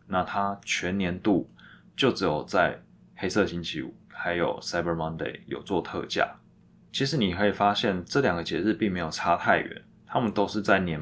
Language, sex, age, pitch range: Chinese, male, 20-39, 85-105 Hz